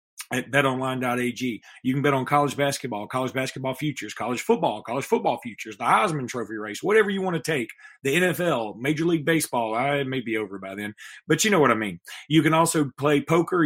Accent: American